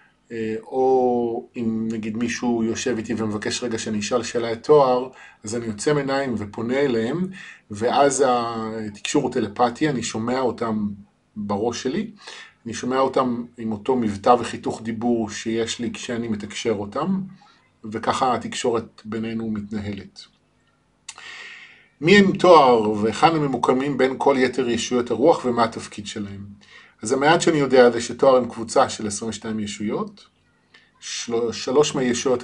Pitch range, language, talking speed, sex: 110-130 Hz, Hebrew, 130 wpm, male